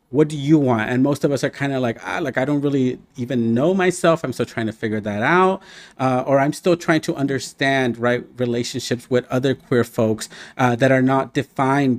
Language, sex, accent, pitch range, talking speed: English, male, American, 115-135 Hz, 215 wpm